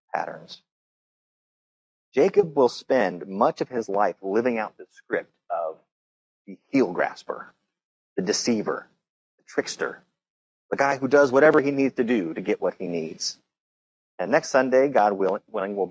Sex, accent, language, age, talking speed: male, American, English, 30-49, 150 wpm